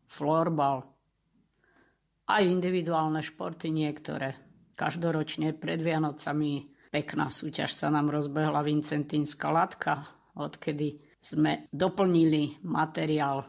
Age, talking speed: 50-69, 85 wpm